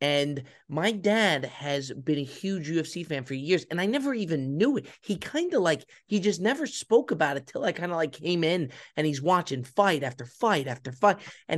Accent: American